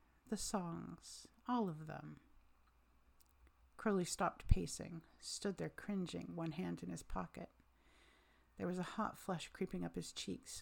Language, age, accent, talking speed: English, 50-69, American, 140 wpm